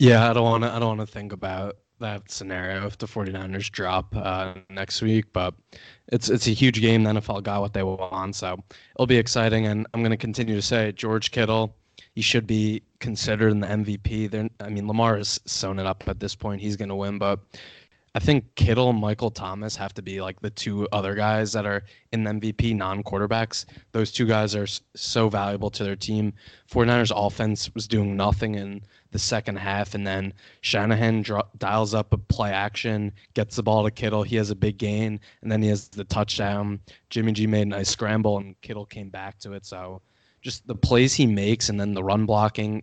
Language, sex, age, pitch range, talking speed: English, male, 20-39, 100-110 Hz, 215 wpm